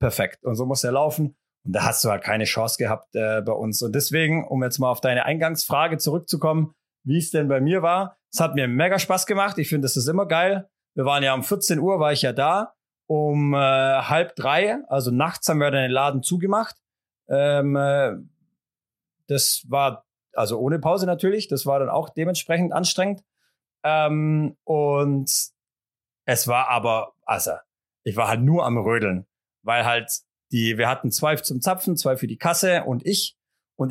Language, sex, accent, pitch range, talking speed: German, male, German, 130-165 Hz, 190 wpm